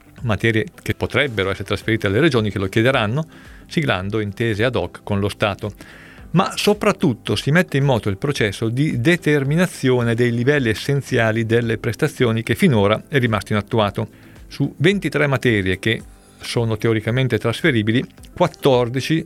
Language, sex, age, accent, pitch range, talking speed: Italian, male, 40-59, native, 105-130 Hz, 140 wpm